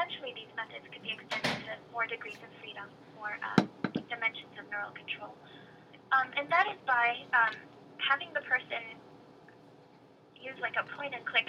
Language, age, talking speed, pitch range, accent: English, 20-39, 150 wpm, 230-275 Hz, American